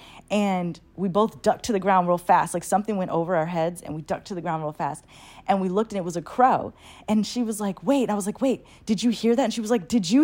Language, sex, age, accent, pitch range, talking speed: English, female, 20-39, American, 180-235 Hz, 300 wpm